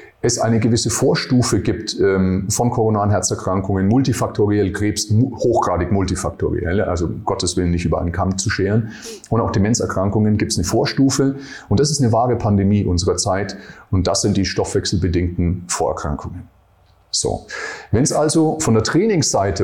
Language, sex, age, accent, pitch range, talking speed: German, male, 40-59, German, 100-130 Hz, 155 wpm